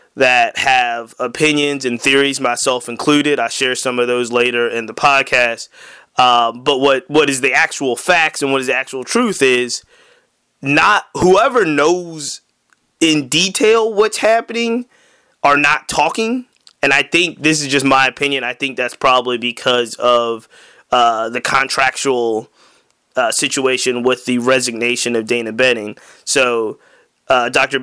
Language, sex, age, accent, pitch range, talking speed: English, male, 20-39, American, 120-140 Hz, 150 wpm